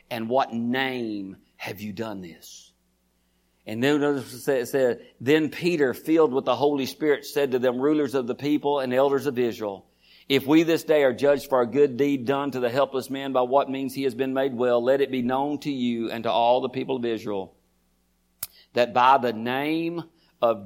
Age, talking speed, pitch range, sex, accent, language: 50-69, 205 wpm, 105-140 Hz, male, American, English